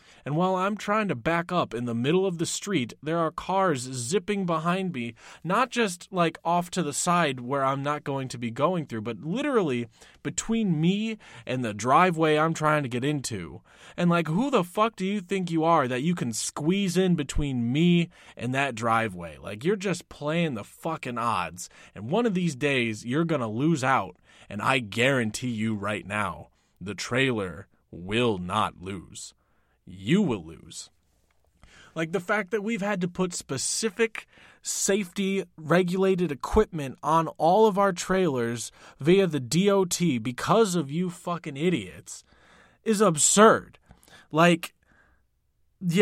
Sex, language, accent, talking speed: male, English, American, 165 wpm